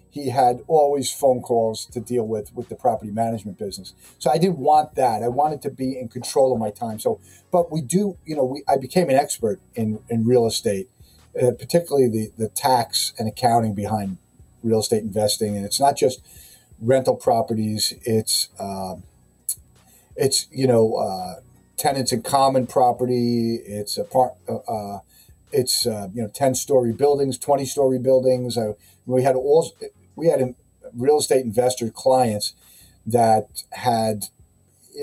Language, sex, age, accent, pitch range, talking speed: English, male, 40-59, American, 110-130 Hz, 170 wpm